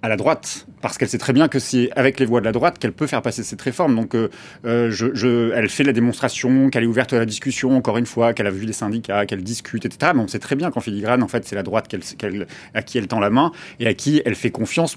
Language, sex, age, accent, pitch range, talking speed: French, male, 30-49, French, 105-125 Hz, 295 wpm